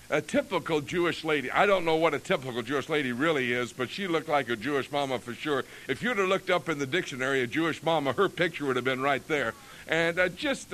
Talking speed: 245 wpm